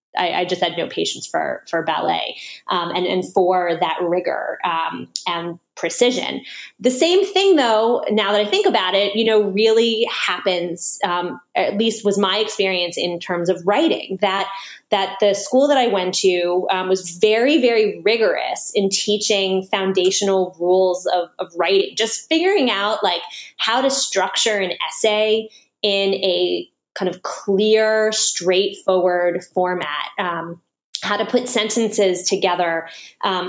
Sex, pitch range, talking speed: female, 180-215 Hz, 150 wpm